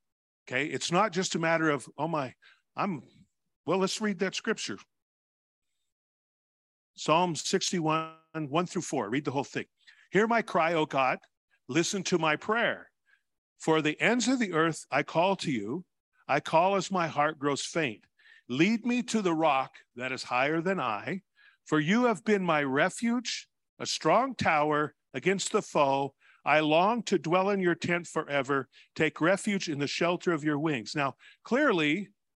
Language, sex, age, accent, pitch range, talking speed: English, male, 50-69, American, 150-205 Hz, 165 wpm